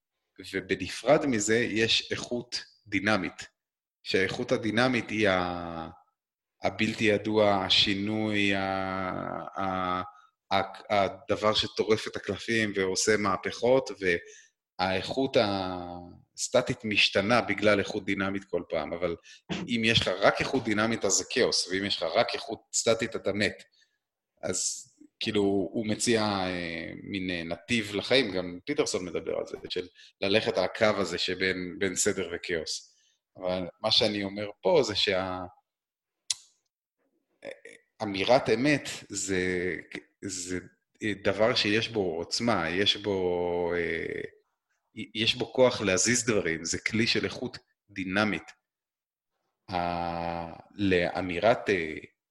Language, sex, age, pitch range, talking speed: English, male, 30-49, 90-115 Hz, 105 wpm